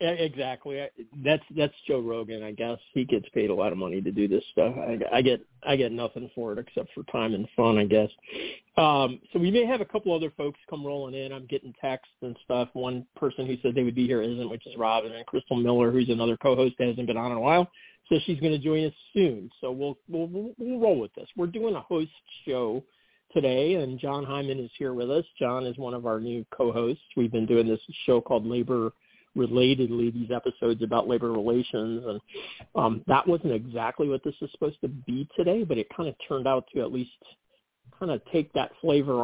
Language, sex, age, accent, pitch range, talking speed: English, male, 50-69, American, 120-155 Hz, 230 wpm